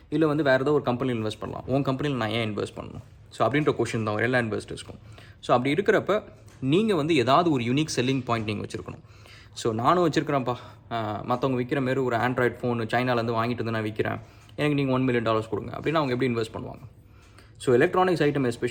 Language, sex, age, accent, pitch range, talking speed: English, male, 20-39, Indian, 115-140 Hz, 120 wpm